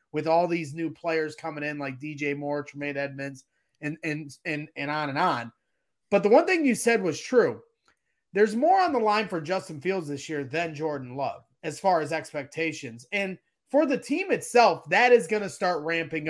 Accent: American